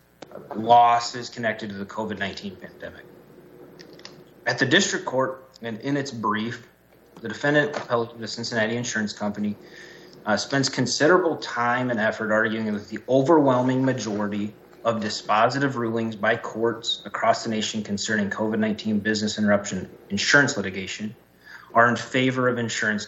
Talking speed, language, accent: 130 wpm, English, American